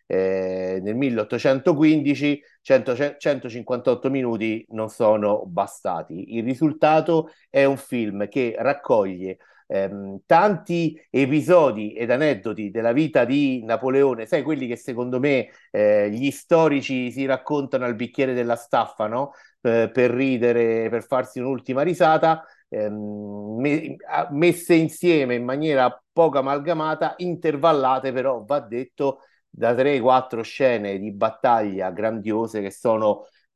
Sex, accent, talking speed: male, native, 120 wpm